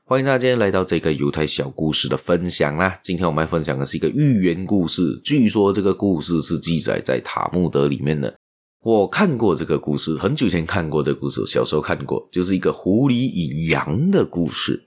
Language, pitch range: Chinese, 80-115 Hz